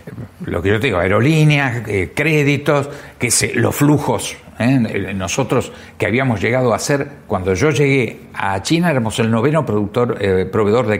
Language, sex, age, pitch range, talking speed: Spanish, male, 60-79, 105-150 Hz, 160 wpm